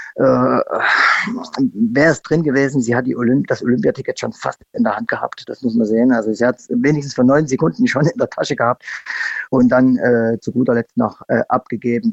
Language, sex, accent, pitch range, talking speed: German, male, German, 120-145 Hz, 210 wpm